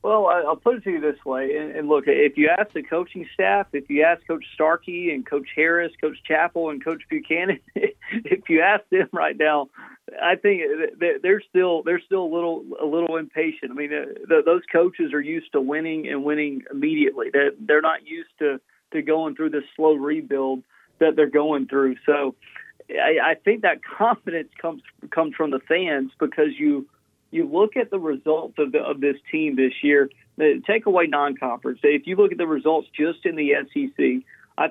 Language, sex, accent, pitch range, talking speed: English, male, American, 150-215 Hz, 195 wpm